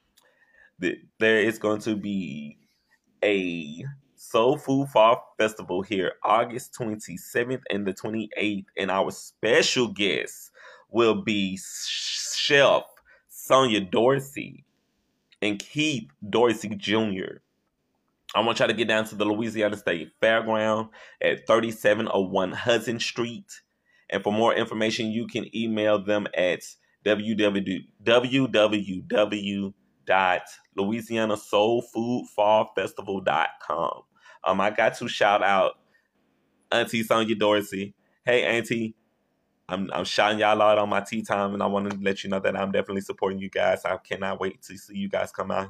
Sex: male